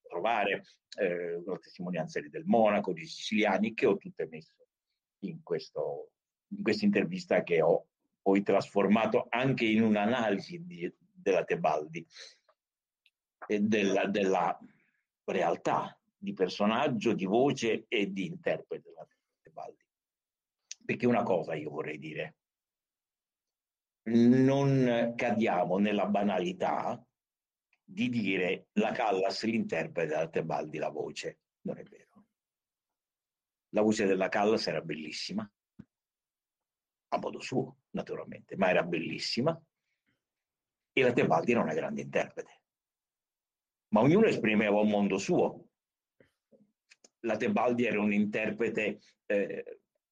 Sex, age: male, 60-79